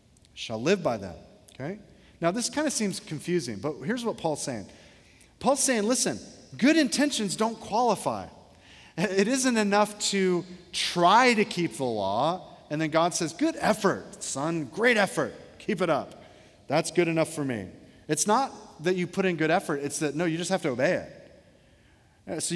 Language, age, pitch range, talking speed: English, 40-59, 140-200 Hz, 180 wpm